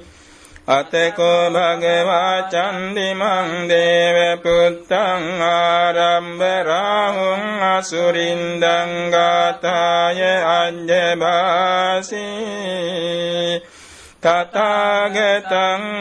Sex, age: male, 60-79